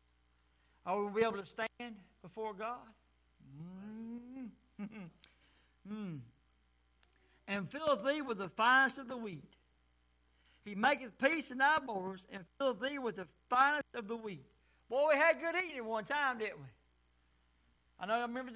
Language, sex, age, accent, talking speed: English, male, 60-79, American, 150 wpm